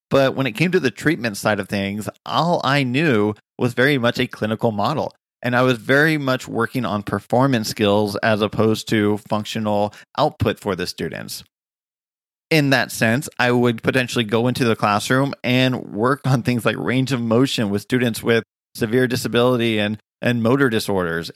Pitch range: 110-130 Hz